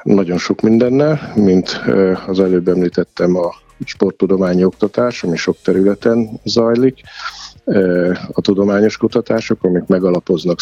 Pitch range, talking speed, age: 90-105 Hz, 105 wpm, 50-69